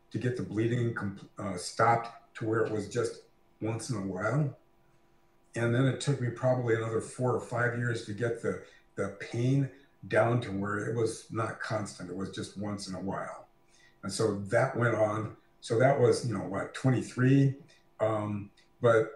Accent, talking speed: American, 185 wpm